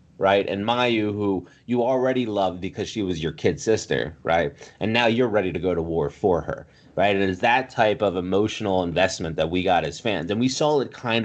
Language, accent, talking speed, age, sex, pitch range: English, American, 225 wpm, 30-49, male, 95-125 Hz